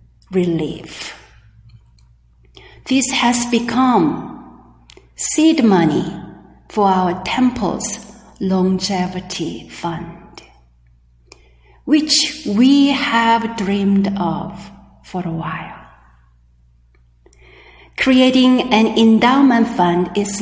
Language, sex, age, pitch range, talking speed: English, female, 40-59, 170-235 Hz, 70 wpm